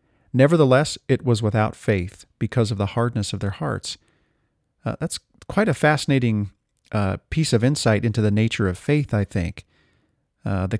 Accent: American